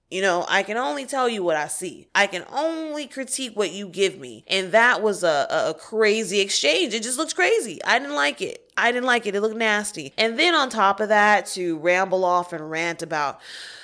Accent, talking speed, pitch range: American, 230 wpm, 165-220 Hz